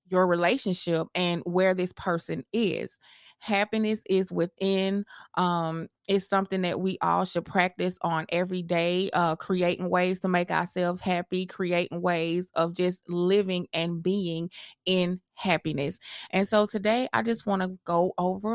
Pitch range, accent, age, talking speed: 175-210 Hz, American, 20-39, 150 wpm